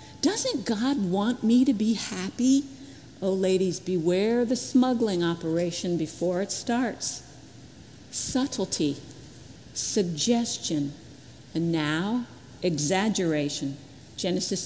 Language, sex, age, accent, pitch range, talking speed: English, female, 50-69, American, 165-245 Hz, 90 wpm